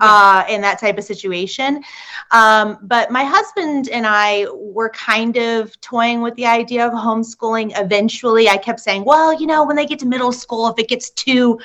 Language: English